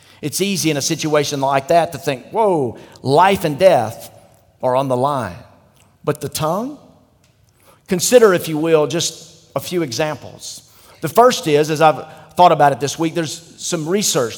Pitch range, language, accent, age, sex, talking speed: 125-170 Hz, English, American, 50-69, male, 170 wpm